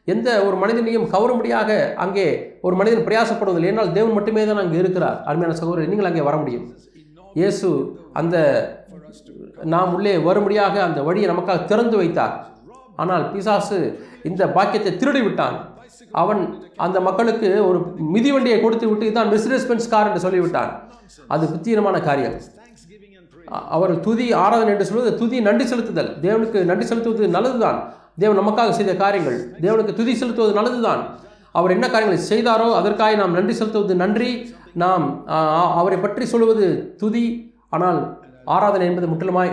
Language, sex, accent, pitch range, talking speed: Tamil, male, native, 175-215 Hz, 130 wpm